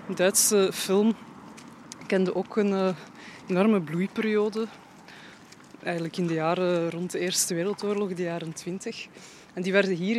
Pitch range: 175-205 Hz